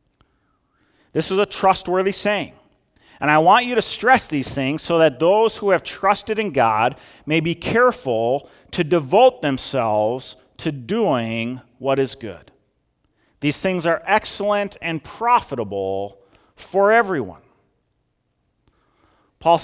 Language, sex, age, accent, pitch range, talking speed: English, male, 40-59, American, 130-190 Hz, 125 wpm